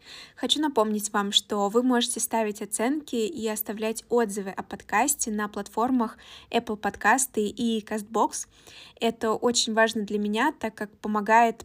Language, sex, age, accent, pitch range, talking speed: Russian, female, 20-39, native, 205-230 Hz, 140 wpm